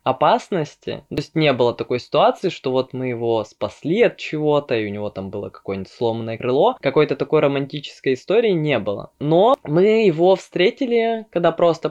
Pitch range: 135-170 Hz